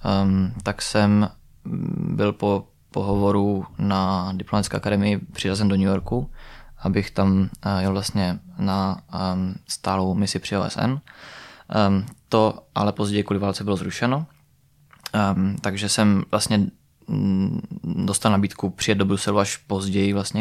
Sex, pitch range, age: male, 95-105 Hz, 20-39